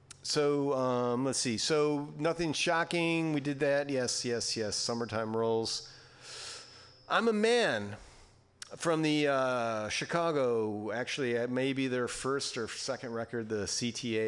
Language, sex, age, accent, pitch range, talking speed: English, male, 40-59, American, 110-145 Hz, 130 wpm